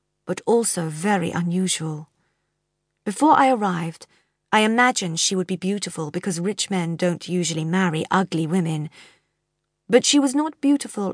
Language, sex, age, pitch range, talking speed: English, female, 40-59, 165-200 Hz, 140 wpm